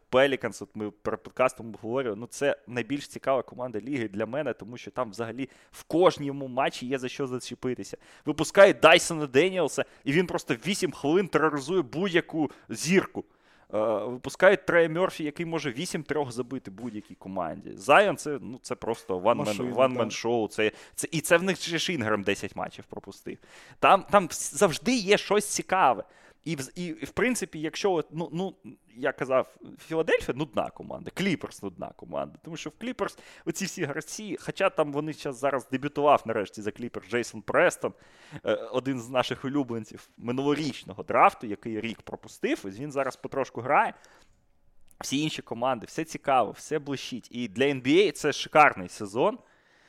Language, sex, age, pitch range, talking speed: Russian, male, 20-39, 120-160 Hz, 155 wpm